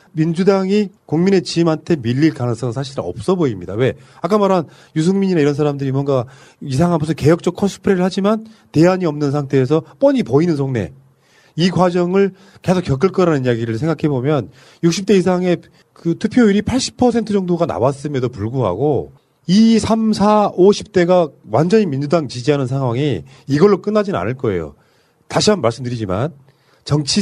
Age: 30-49